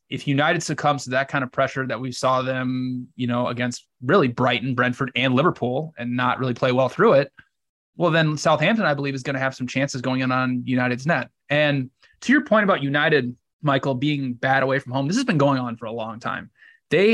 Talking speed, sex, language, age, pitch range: 230 wpm, male, English, 20-39, 125-150 Hz